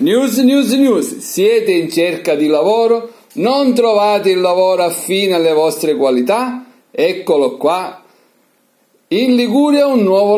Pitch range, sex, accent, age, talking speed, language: 145-230 Hz, male, native, 50-69, 125 wpm, Italian